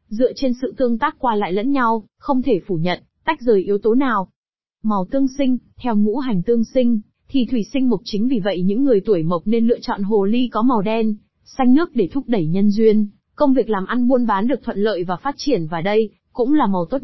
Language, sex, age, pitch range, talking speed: Vietnamese, female, 20-39, 195-250 Hz, 245 wpm